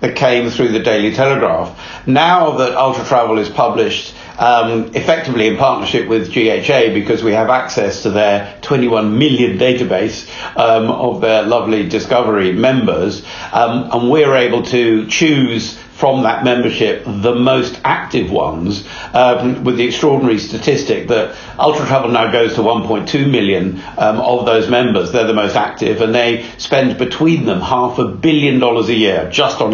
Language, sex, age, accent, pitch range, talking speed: English, male, 50-69, British, 115-140 Hz, 160 wpm